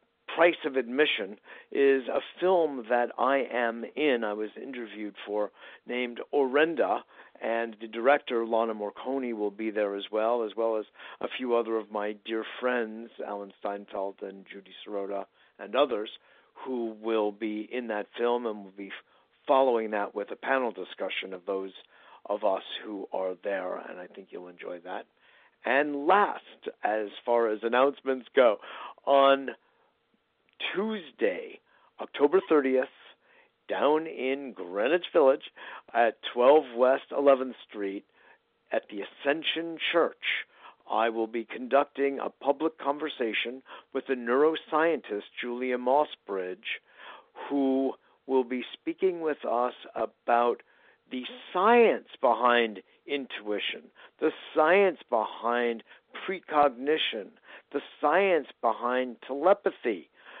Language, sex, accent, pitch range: English, male, American, 110-140 Hz